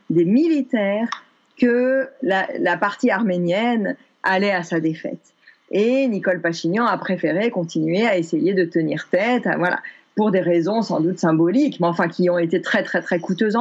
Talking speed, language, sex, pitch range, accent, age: 170 wpm, French, female, 185-250 Hz, French, 40-59